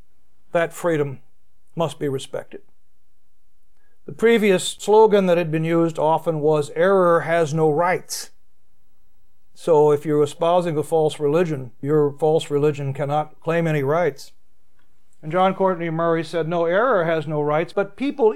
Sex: male